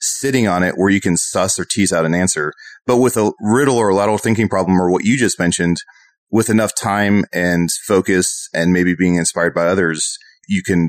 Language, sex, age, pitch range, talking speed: English, male, 30-49, 90-110 Hz, 215 wpm